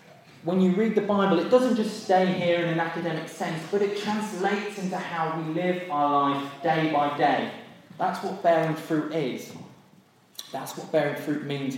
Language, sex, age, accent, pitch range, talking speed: English, male, 20-39, British, 160-195 Hz, 185 wpm